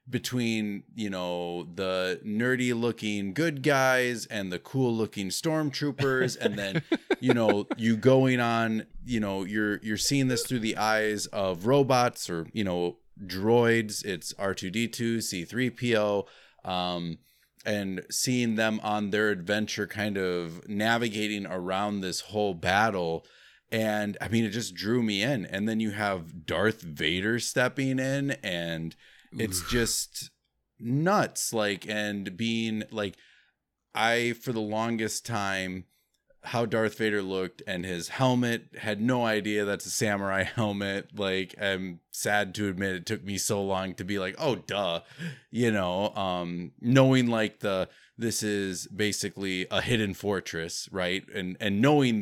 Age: 30-49